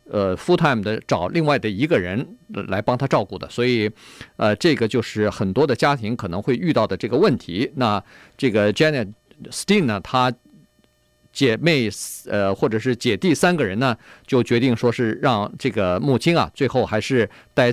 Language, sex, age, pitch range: Chinese, male, 50-69, 115-175 Hz